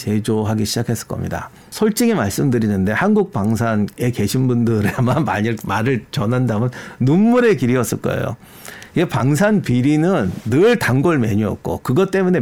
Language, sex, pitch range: Korean, male, 110-145 Hz